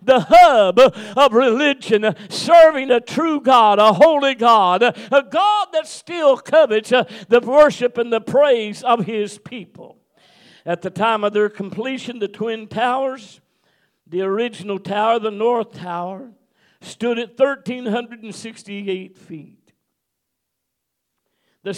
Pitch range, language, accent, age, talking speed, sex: 195-250 Hz, English, American, 60-79, 120 wpm, male